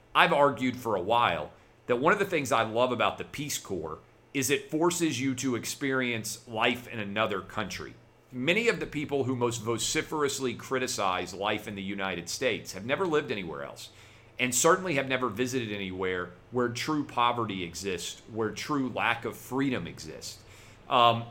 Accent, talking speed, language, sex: American, 170 wpm, English, male